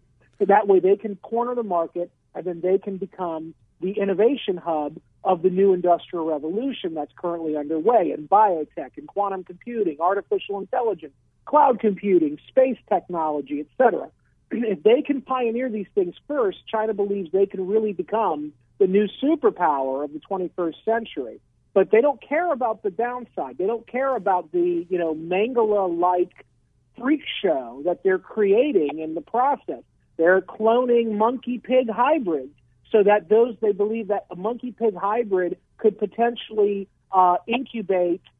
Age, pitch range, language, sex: 50-69, 185-235 Hz, English, male